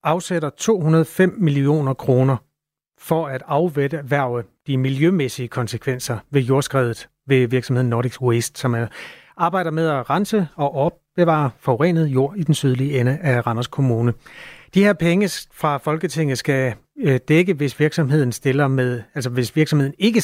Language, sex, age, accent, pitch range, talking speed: Danish, male, 30-49, native, 130-160 Hz, 145 wpm